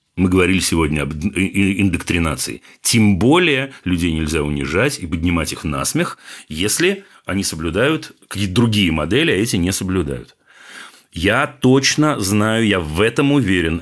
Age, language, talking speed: 40-59, Russian, 140 wpm